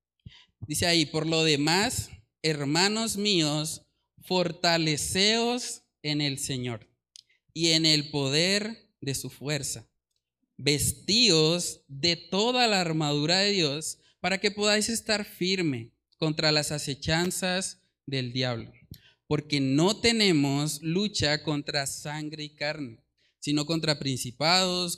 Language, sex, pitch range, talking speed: Spanish, male, 140-185 Hz, 110 wpm